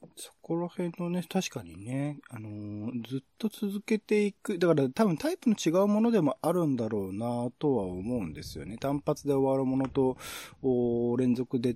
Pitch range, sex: 105-160 Hz, male